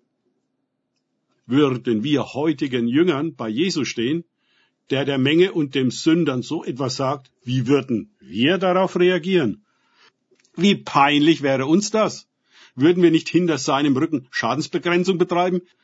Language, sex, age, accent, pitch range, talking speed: German, male, 50-69, German, 135-175 Hz, 130 wpm